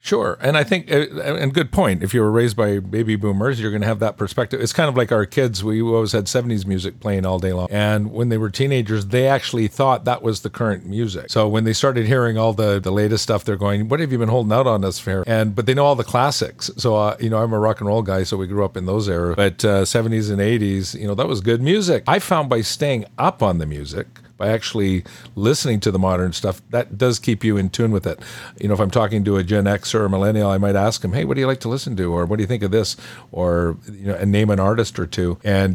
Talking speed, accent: 280 wpm, American